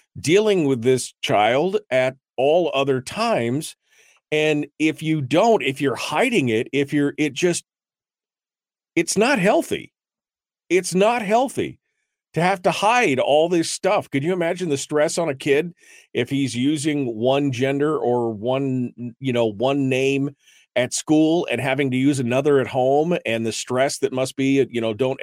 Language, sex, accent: English, male, American